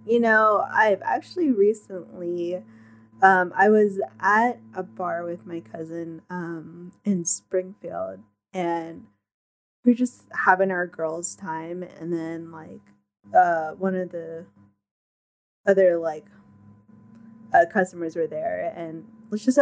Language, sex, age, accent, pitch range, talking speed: English, female, 10-29, American, 155-205 Hz, 125 wpm